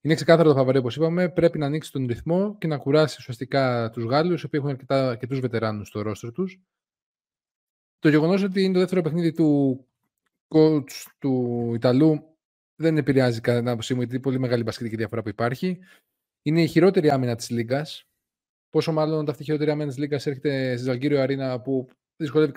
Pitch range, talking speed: 130-165 Hz, 180 wpm